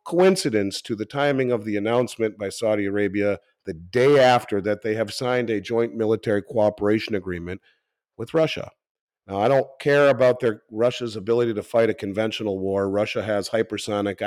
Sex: male